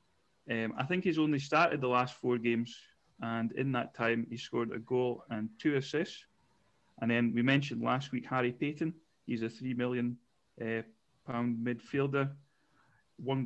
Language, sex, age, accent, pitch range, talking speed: English, male, 40-59, British, 120-140 Hz, 165 wpm